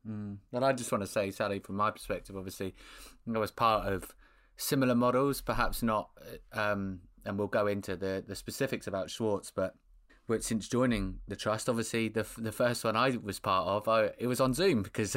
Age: 20-39